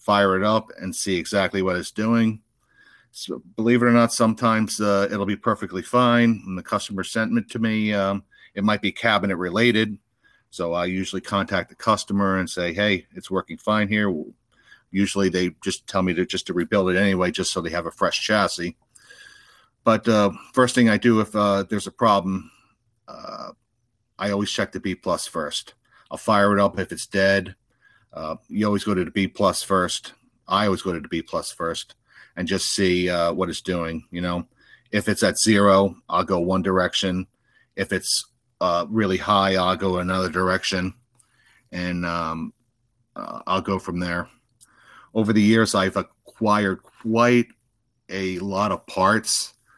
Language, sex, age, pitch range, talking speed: English, male, 50-69, 95-110 Hz, 180 wpm